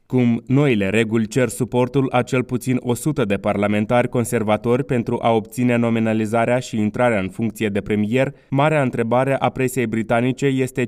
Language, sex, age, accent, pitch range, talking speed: Romanian, male, 20-39, native, 110-130 Hz, 155 wpm